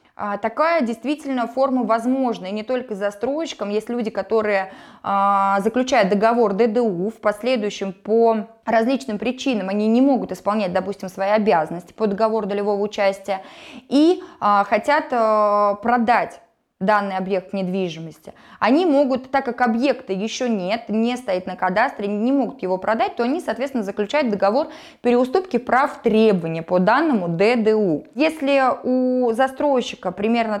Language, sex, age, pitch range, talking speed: Russian, female, 20-39, 200-260 Hz, 130 wpm